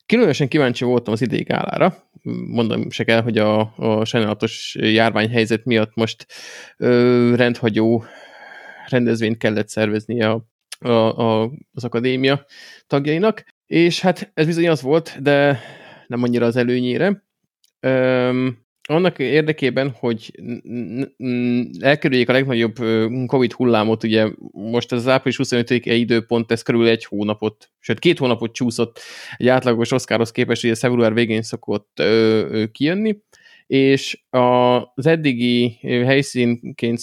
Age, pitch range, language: 20-39, 115-130 Hz, Hungarian